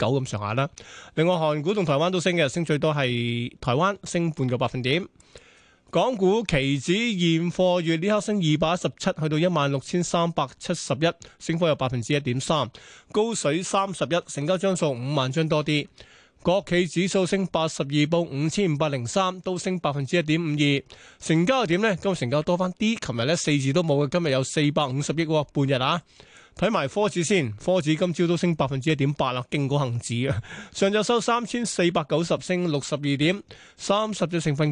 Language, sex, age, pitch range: Chinese, male, 20-39, 145-185 Hz